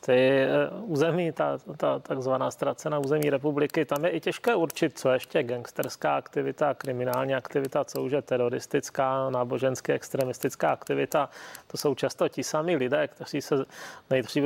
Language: Czech